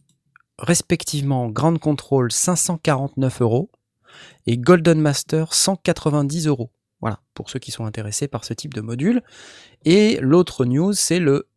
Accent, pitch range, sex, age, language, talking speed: French, 115-155 Hz, male, 30-49, French, 135 wpm